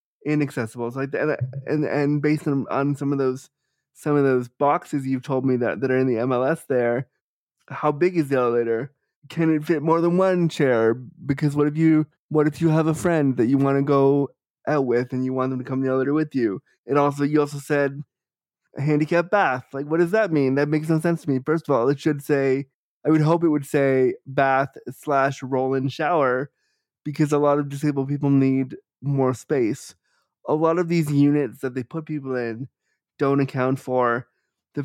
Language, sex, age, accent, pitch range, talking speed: English, male, 20-39, American, 130-155 Hz, 210 wpm